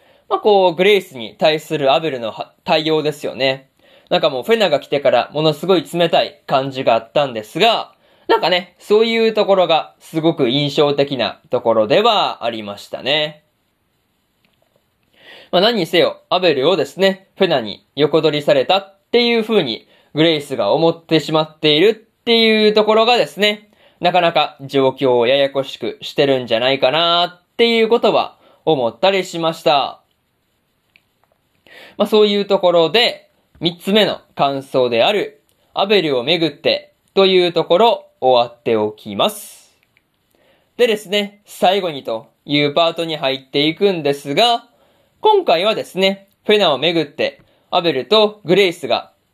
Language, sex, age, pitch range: Japanese, male, 20-39, 140-195 Hz